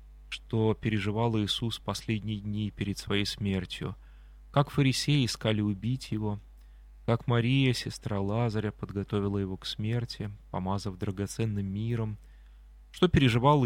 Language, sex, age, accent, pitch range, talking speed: Russian, male, 20-39, native, 95-120 Hz, 115 wpm